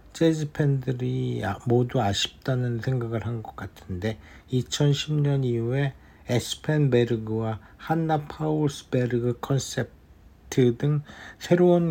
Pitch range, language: 115-145 Hz, Korean